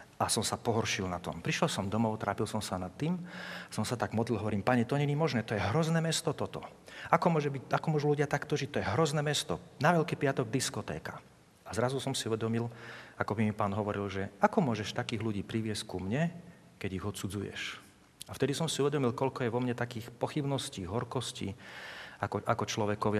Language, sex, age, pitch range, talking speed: Slovak, male, 40-59, 100-125 Hz, 210 wpm